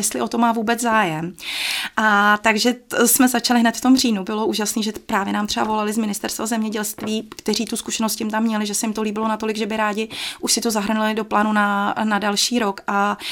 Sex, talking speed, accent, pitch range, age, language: female, 225 wpm, native, 210-240 Hz, 30-49, Czech